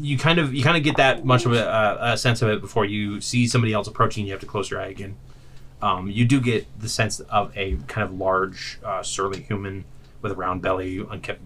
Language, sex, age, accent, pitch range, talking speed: English, male, 30-49, American, 100-125 Hz, 245 wpm